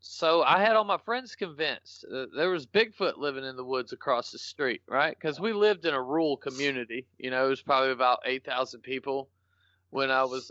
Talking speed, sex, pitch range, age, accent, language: 205 wpm, male, 110-135 Hz, 30-49, American, English